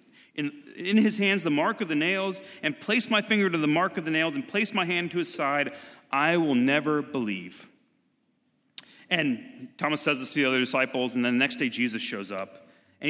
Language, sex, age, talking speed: English, male, 30-49, 215 wpm